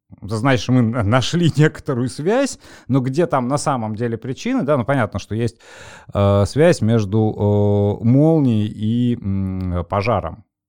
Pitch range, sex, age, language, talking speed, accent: 105-140 Hz, male, 30-49, Russian, 140 wpm, native